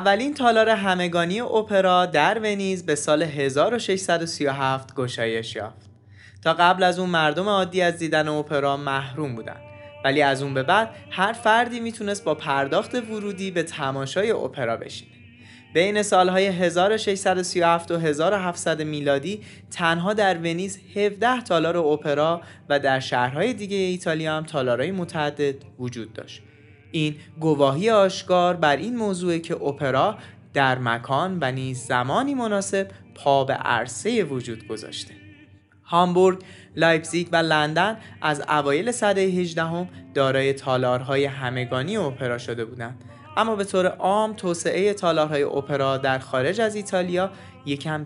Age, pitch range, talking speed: 20-39, 130-185 Hz, 130 wpm